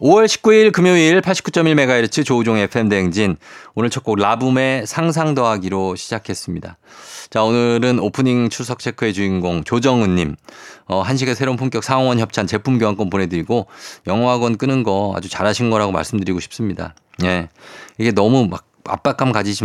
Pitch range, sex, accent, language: 100-135 Hz, male, native, Korean